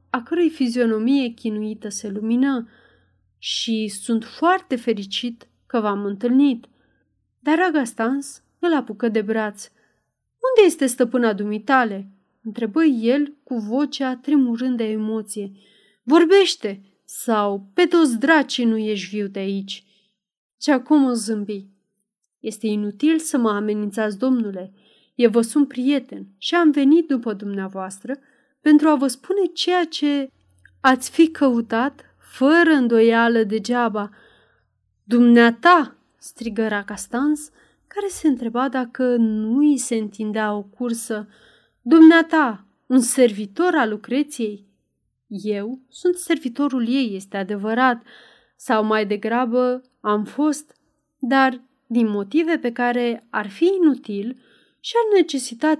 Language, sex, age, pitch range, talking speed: Romanian, female, 30-49, 215-280 Hz, 120 wpm